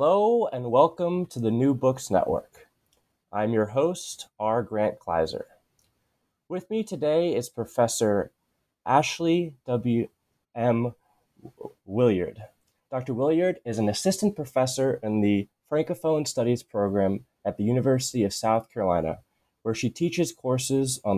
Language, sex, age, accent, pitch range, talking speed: English, male, 20-39, American, 100-135 Hz, 130 wpm